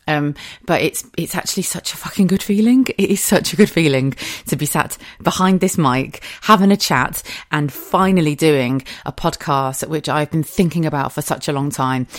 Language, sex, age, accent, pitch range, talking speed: English, female, 30-49, British, 140-185 Hz, 195 wpm